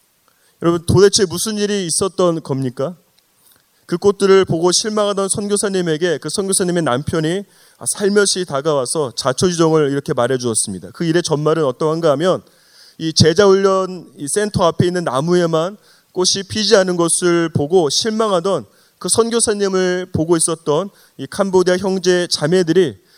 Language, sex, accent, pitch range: Korean, male, native, 165-200 Hz